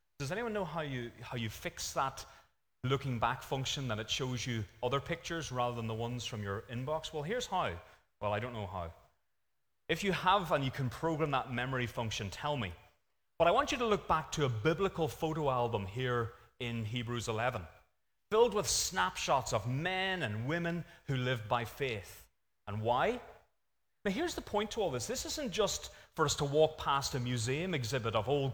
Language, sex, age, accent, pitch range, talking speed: English, male, 30-49, British, 110-150 Hz, 200 wpm